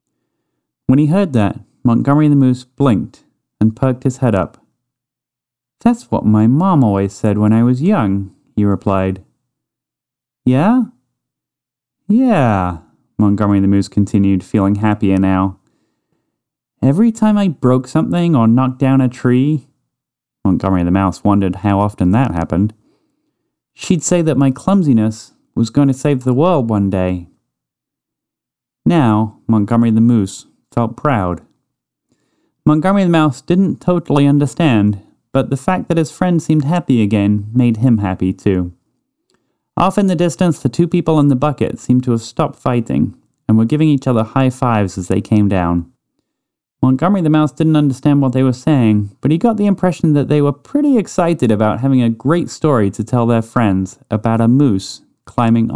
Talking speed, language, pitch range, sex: 160 wpm, English, 100-150 Hz, male